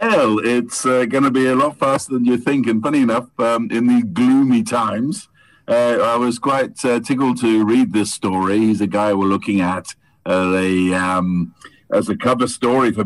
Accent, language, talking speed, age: British, English, 200 wpm, 50-69